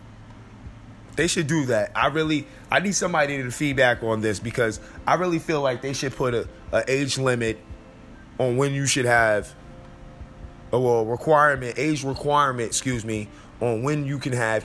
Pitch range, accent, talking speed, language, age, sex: 110-135 Hz, American, 170 wpm, English, 20-39, male